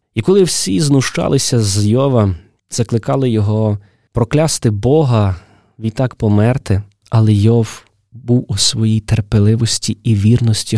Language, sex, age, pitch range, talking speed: Ukrainian, male, 20-39, 100-130 Hz, 110 wpm